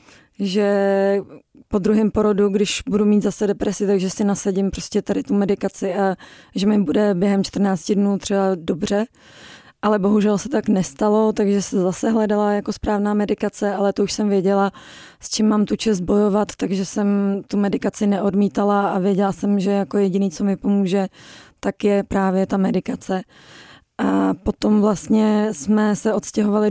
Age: 20-39